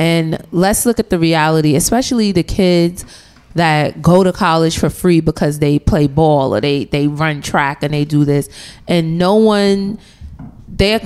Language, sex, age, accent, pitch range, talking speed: English, female, 30-49, American, 155-185 Hz, 175 wpm